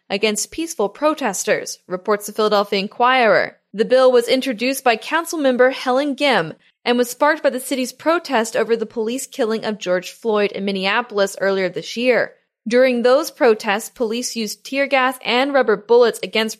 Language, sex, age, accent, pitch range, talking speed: English, female, 10-29, American, 210-265 Hz, 165 wpm